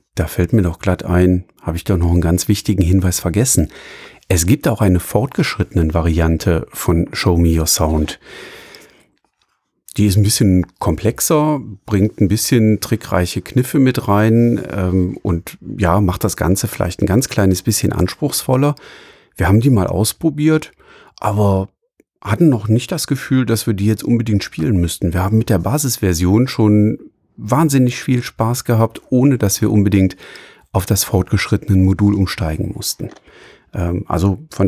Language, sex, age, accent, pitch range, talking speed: German, male, 40-59, German, 95-125 Hz, 155 wpm